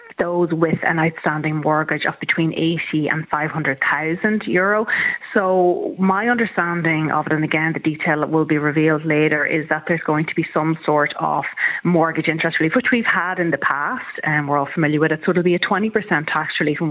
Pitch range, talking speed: 150-175 Hz, 215 wpm